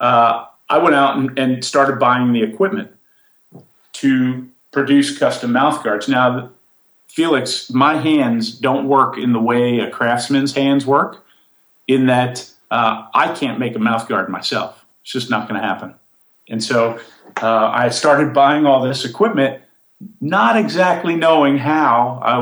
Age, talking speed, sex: 40-59, 155 wpm, male